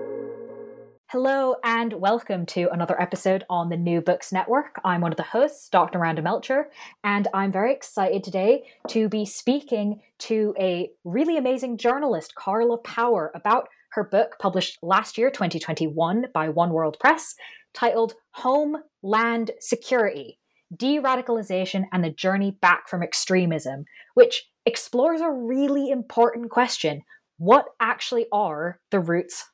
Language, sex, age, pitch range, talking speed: English, female, 20-39, 180-255 Hz, 135 wpm